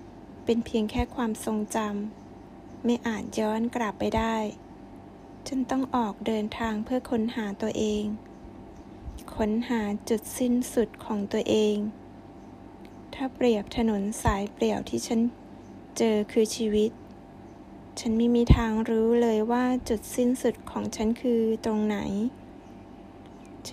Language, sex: Thai, female